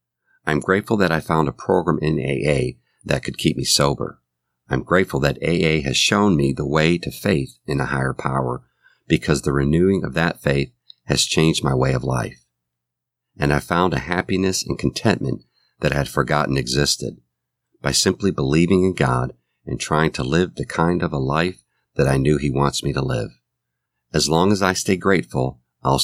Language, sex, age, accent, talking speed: English, male, 50-69, American, 190 wpm